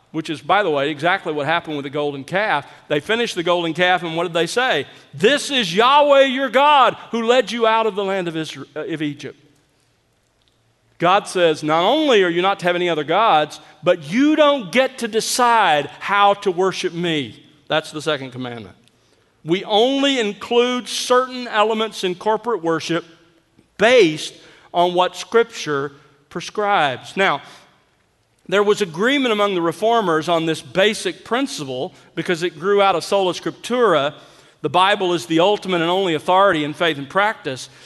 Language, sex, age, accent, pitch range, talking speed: English, male, 50-69, American, 150-220 Hz, 170 wpm